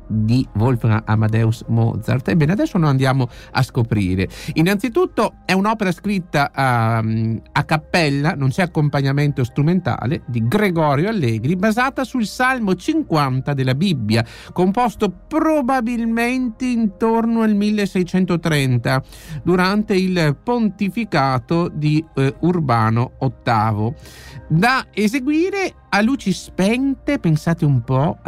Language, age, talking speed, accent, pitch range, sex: Italian, 50-69, 105 wpm, native, 125-210 Hz, male